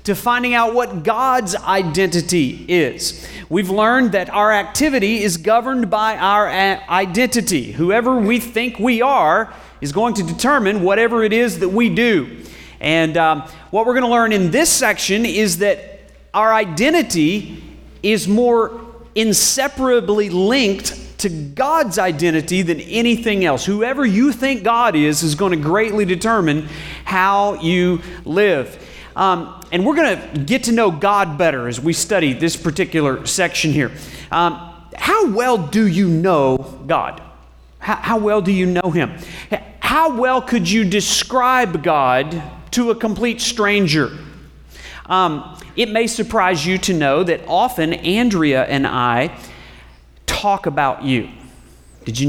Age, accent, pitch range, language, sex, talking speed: 40-59, American, 165-230 Hz, English, male, 140 wpm